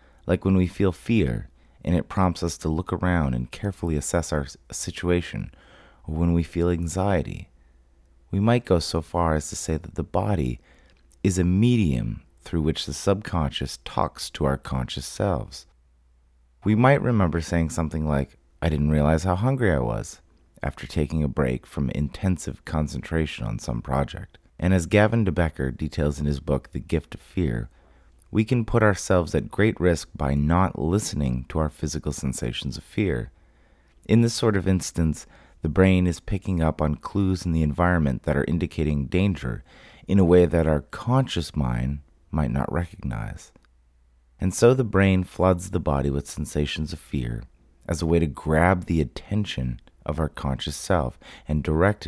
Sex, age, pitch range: male, 30-49, 70-95 Hz